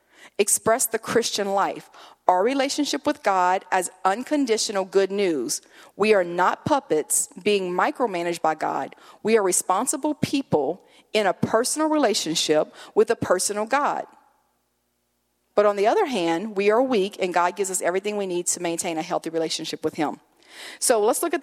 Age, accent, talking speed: 40-59, American, 160 wpm